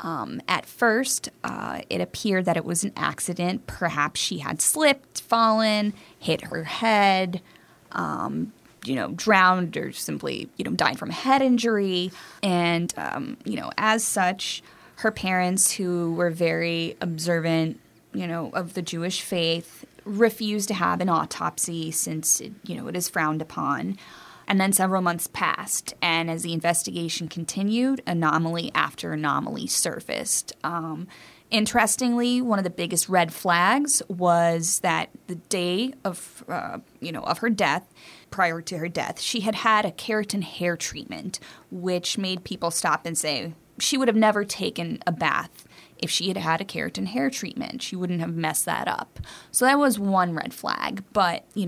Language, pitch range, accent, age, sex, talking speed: English, 170-215 Hz, American, 20-39, female, 165 wpm